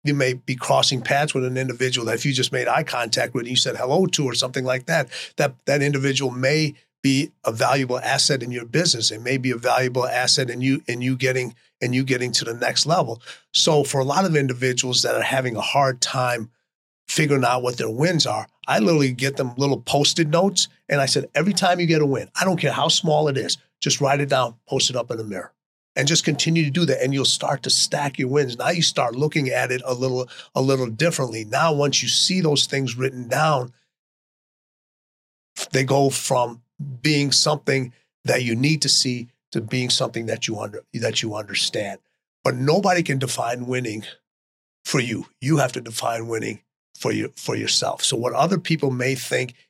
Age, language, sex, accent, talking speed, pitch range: 30-49, English, male, American, 215 wpm, 125-150 Hz